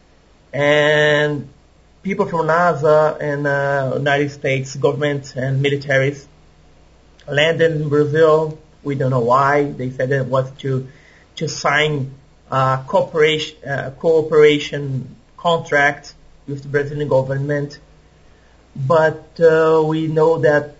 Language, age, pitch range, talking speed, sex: English, 30-49, 135-160 Hz, 115 wpm, male